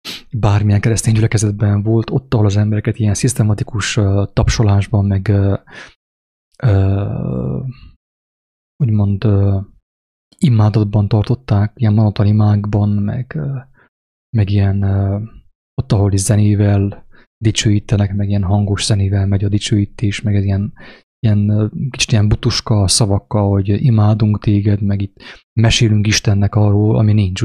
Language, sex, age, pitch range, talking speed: English, male, 20-39, 100-115 Hz, 120 wpm